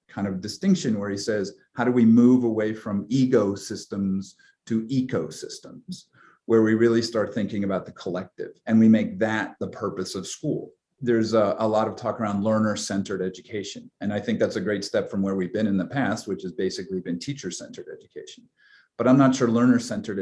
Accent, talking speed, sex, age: American, 205 wpm, male, 40-59